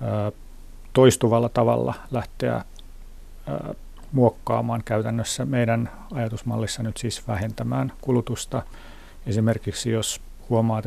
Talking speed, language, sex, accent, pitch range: 75 wpm, Finnish, male, native, 110-125 Hz